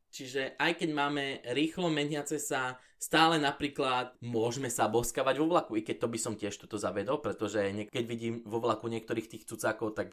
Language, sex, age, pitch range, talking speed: Slovak, male, 20-39, 115-155 Hz, 190 wpm